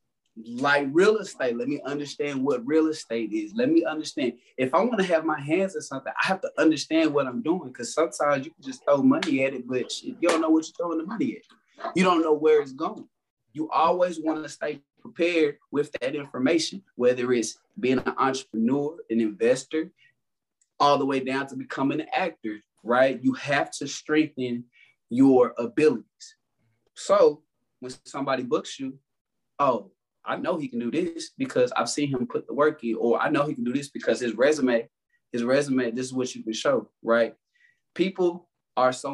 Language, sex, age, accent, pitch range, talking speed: English, male, 20-39, American, 130-165 Hz, 195 wpm